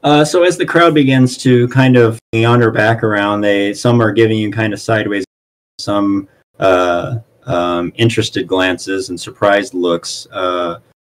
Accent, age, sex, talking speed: American, 30-49, male, 160 wpm